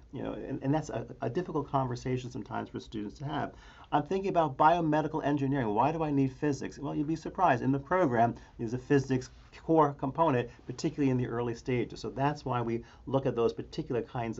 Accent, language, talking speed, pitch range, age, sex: American, English, 210 wpm, 115-150 Hz, 40-59, male